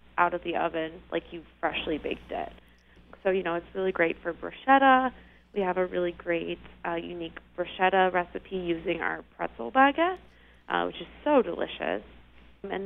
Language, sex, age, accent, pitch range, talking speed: English, female, 20-39, American, 165-195 Hz, 170 wpm